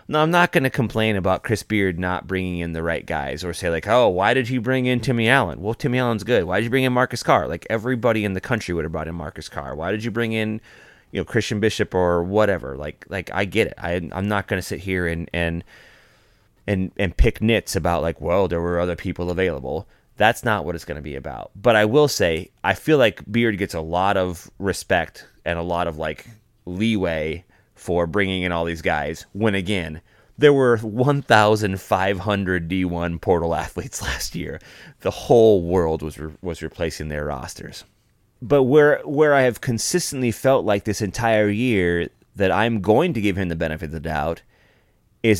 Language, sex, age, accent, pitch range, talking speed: English, male, 30-49, American, 85-115 Hz, 210 wpm